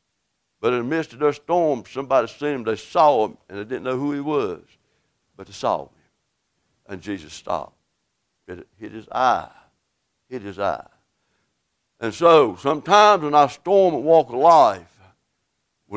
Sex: male